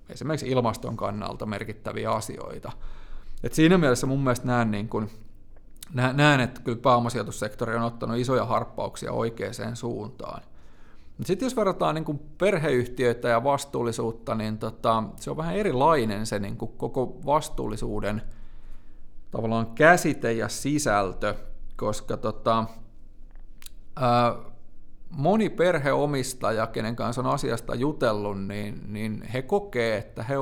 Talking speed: 120 wpm